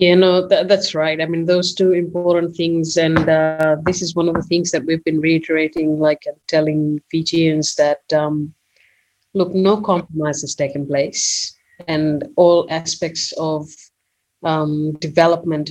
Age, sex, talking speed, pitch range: 30-49, female, 155 wpm, 155-180 Hz